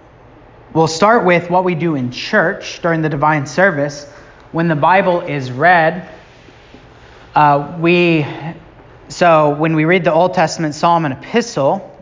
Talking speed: 145 wpm